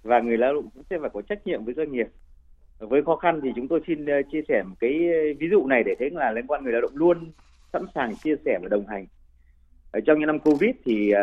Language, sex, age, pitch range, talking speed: Vietnamese, male, 30-49, 110-165 Hz, 260 wpm